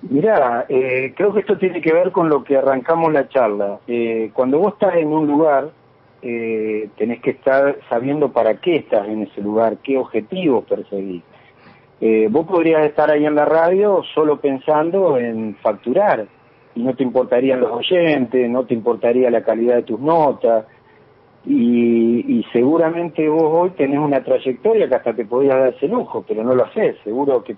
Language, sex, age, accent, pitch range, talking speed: Spanish, male, 50-69, Argentinian, 120-160 Hz, 180 wpm